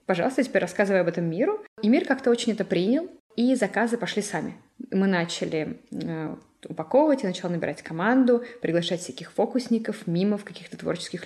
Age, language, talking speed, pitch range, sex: 20-39, Russian, 160 wpm, 175-240 Hz, female